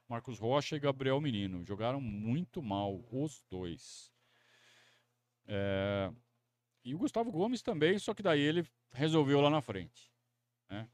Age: 40-59